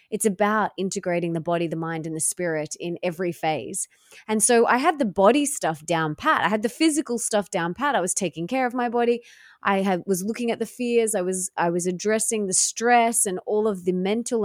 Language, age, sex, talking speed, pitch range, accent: English, 20-39, female, 230 wpm, 195-245 Hz, Australian